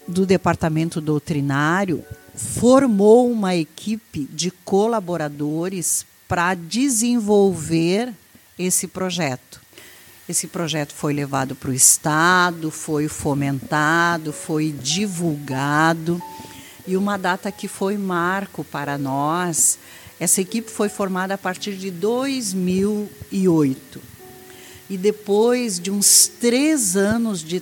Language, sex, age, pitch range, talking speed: Portuguese, female, 50-69, 150-195 Hz, 100 wpm